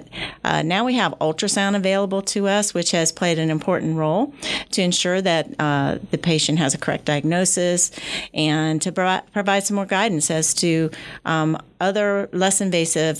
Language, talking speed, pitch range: English, 170 wpm, 155-190 Hz